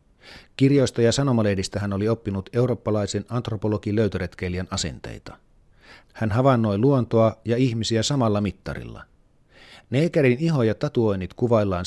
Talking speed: 110 wpm